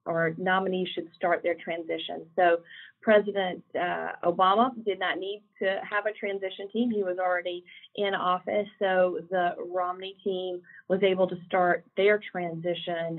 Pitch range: 175-210 Hz